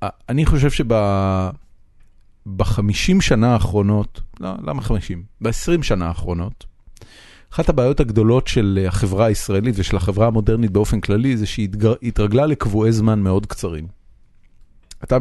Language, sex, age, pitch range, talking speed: Hebrew, male, 30-49, 95-115 Hz, 120 wpm